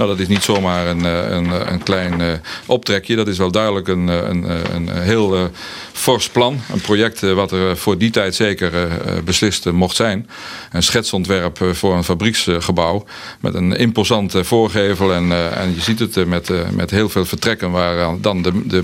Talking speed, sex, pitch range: 170 wpm, male, 90-105 Hz